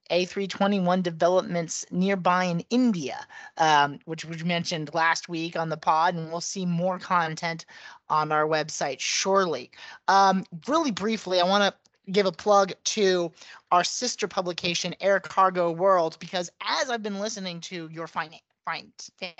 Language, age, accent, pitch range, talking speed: English, 30-49, American, 170-205 Hz, 150 wpm